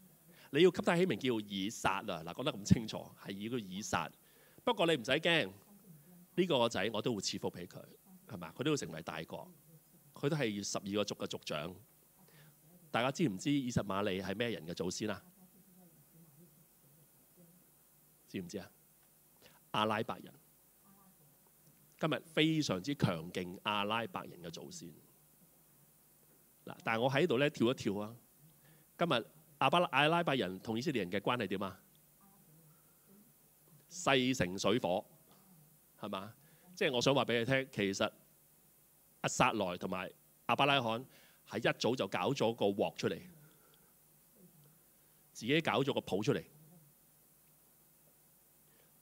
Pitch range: 125-175 Hz